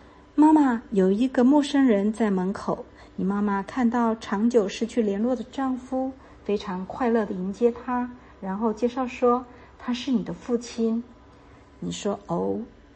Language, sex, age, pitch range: Chinese, female, 50-69, 195-235 Hz